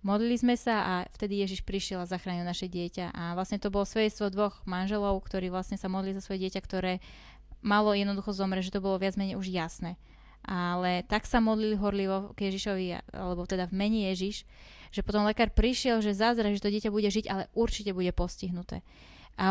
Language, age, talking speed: Slovak, 20-39, 195 wpm